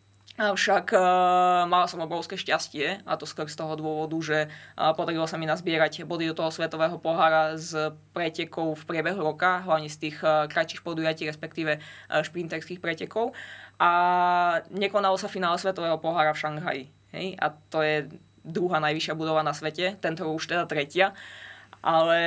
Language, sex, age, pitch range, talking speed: Slovak, female, 20-39, 155-175 Hz, 160 wpm